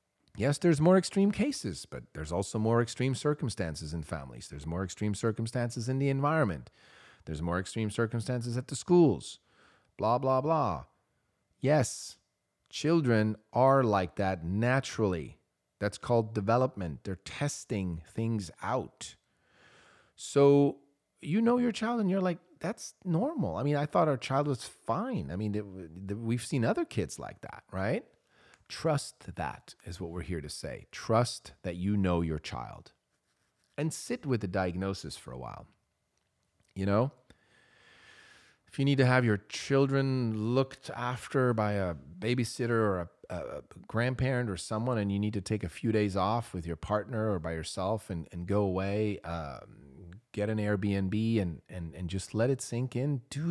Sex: male